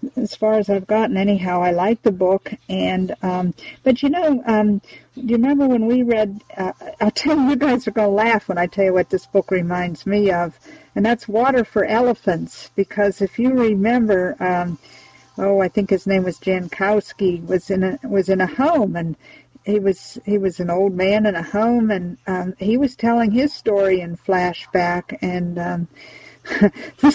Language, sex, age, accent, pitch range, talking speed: English, female, 50-69, American, 180-220 Hz, 195 wpm